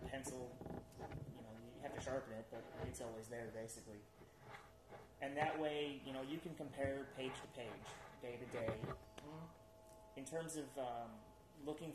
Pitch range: 110-135 Hz